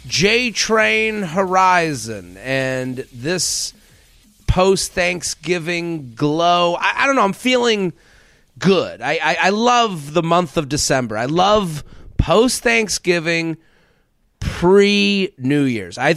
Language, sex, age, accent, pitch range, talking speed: English, male, 30-49, American, 140-200 Hz, 100 wpm